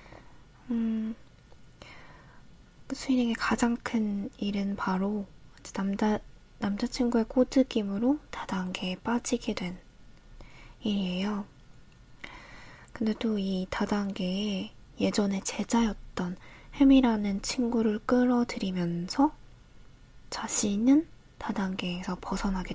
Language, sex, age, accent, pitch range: Korean, female, 20-39, native, 180-230 Hz